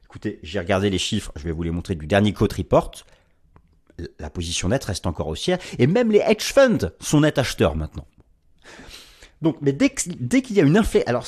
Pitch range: 90-155 Hz